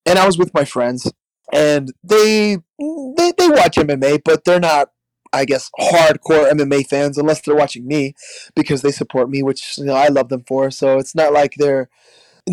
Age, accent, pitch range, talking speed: 20-39, American, 135-180 Hz, 190 wpm